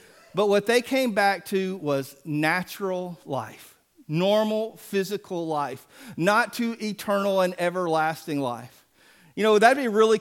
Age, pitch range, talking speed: 40-59, 175-220 Hz, 135 wpm